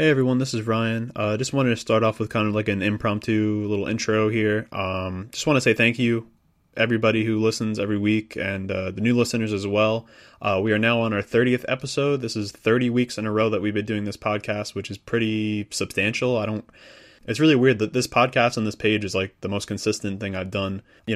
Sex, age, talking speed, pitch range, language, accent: male, 20-39, 240 wpm, 100-115 Hz, English, American